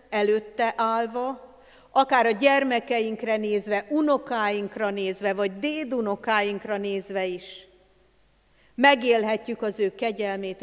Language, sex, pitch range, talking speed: Hungarian, female, 205-255 Hz, 90 wpm